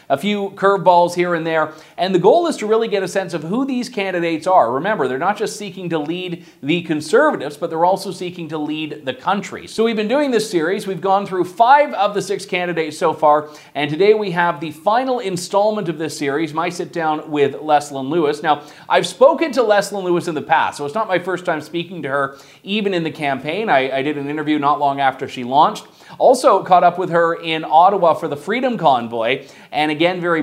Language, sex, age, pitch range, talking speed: English, male, 30-49, 140-190 Hz, 225 wpm